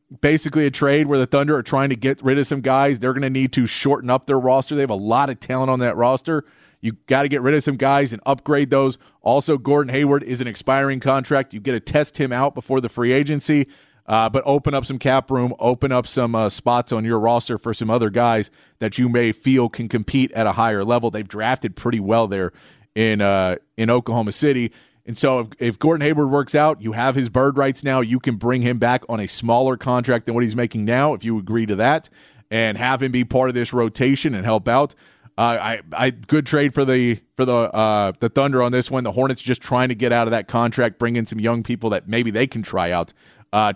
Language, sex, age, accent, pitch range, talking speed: English, male, 30-49, American, 115-135 Hz, 245 wpm